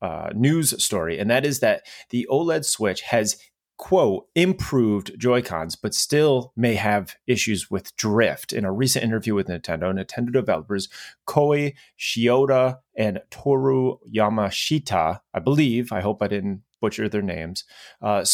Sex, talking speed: male, 145 wpm